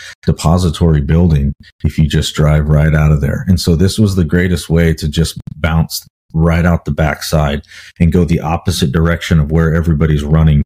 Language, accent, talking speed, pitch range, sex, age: English, American, 185 wpm, 75-85 Hz, male, 40-59